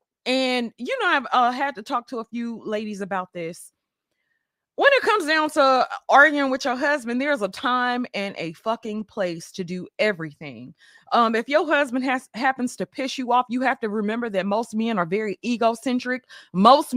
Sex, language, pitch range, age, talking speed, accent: female, English, 200-270 Hz, 20-39, 190 wpm, American